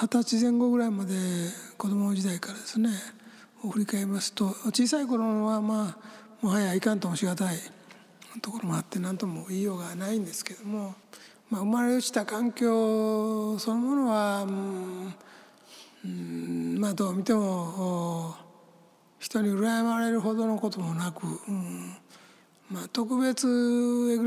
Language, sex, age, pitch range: Japanese, male, 60-79, 175-220 Hz